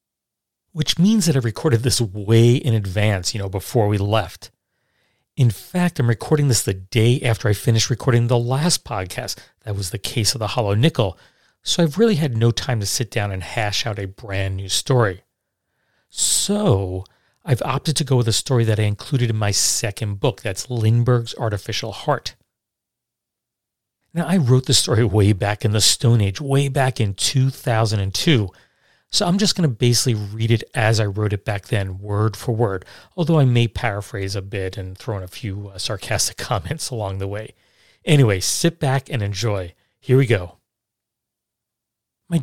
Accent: American